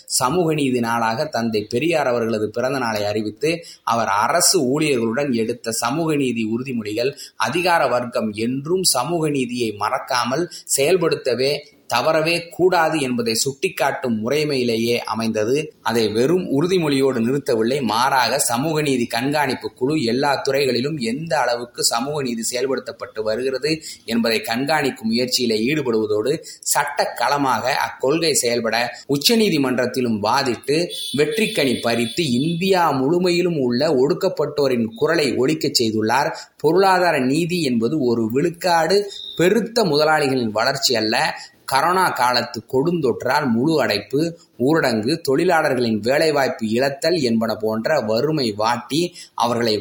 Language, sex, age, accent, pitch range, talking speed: Tamil, male, 20-39, native, 115-160 Hz, 105 wpm